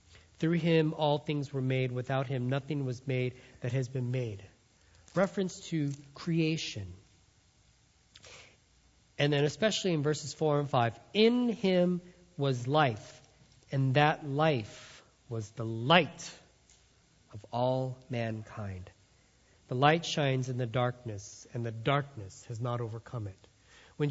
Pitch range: 120-150 Hz